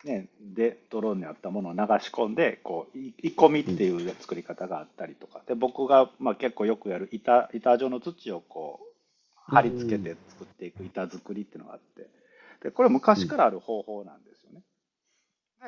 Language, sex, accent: Japanese, male, native